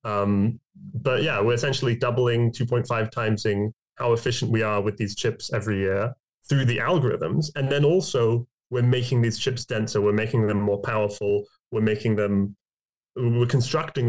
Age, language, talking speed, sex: 20-39, English, 165 wpm, male